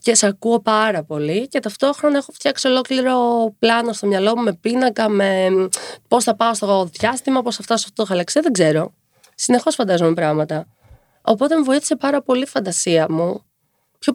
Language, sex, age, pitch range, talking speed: Greek, female, 20-39, 185-240 Hz, 175 wpm